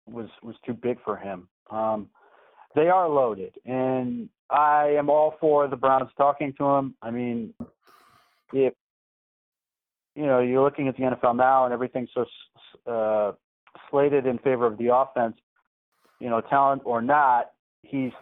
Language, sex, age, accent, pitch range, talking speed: English, male, 40-59, American, 115-135 Hz, 155 wpm